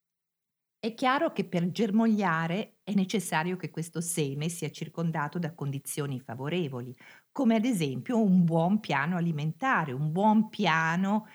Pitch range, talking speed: 160-230 Hz, 130 wpm